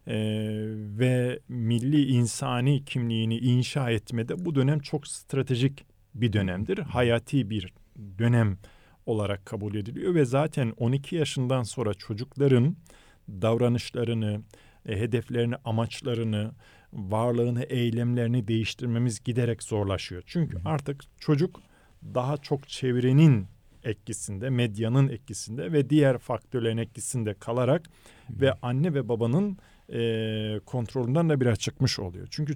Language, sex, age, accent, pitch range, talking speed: Turkish, male, 40-59, native, 110-140 Hz, 105 wpm